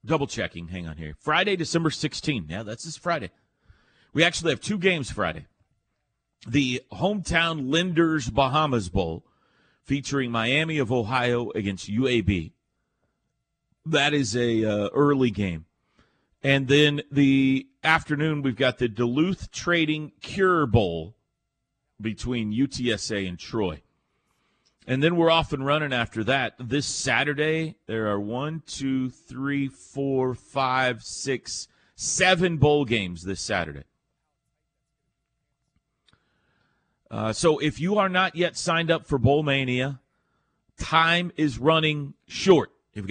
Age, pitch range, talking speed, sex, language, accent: 40-59, 120-155 Hz, 125 wpm, male, English, American